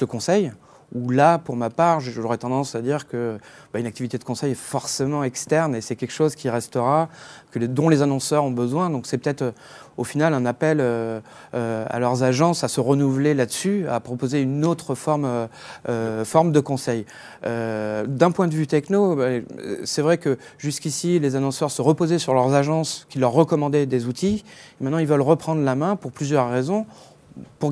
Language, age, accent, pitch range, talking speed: French, 30-49, French, 125-155 Hz, 195 wpm